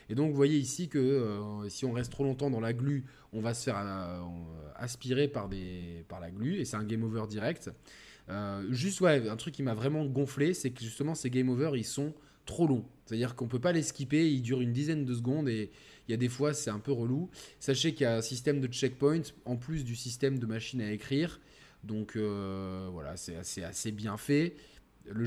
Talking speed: 230 wpm